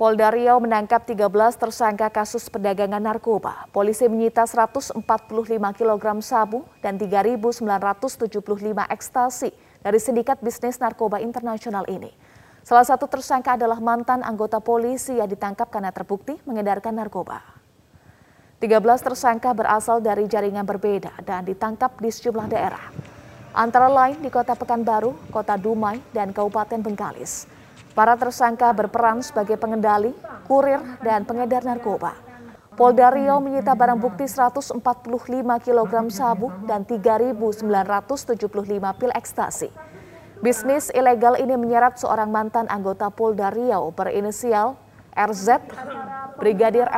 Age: 20-39